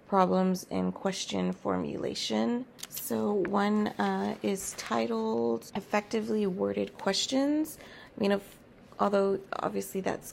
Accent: American